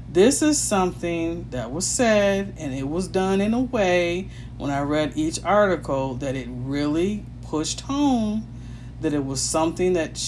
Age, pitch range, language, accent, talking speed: 40-59, 120-155 Hz, English, American, 165 wpm